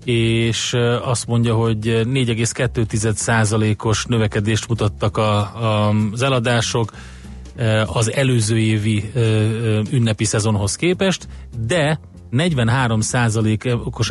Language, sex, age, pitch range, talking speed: Hungarian, male, 30-49, 105-120 Hz, 90 wpm